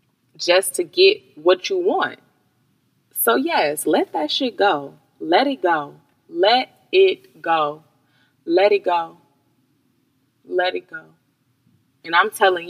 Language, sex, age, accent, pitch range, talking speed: English, female, 20-39, American, 145-205 Hz, 130 wpm